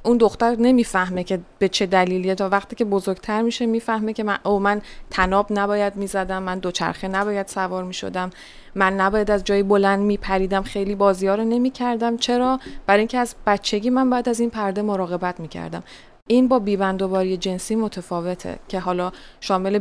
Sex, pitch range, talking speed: female, 185-215 Hz, 170 wpm